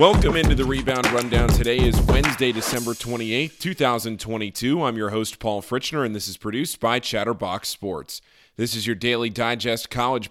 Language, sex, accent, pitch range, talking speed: English, male, American, 110-135 Hz, 170 wpm